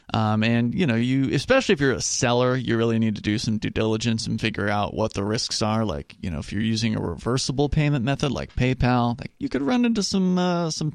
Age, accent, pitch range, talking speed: 30-49, American, 110-145 Hz, 235 wpm